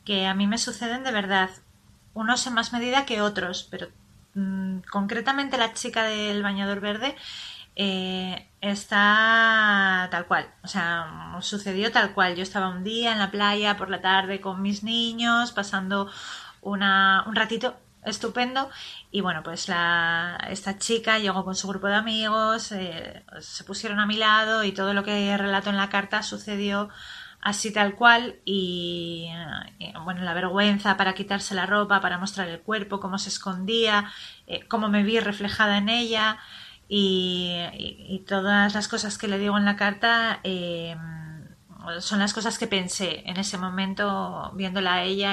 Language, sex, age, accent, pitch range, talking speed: Portuguese, female, 30-49, Spanish, 185-215 Hz, 165 wpm